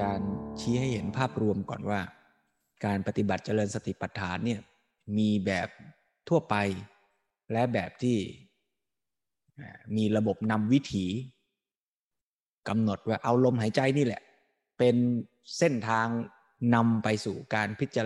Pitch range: 105-125 Hz